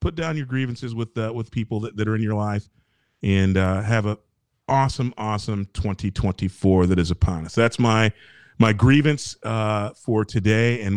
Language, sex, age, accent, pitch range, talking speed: English, male, 40-59, American, 105-125 Hz, 180 wpm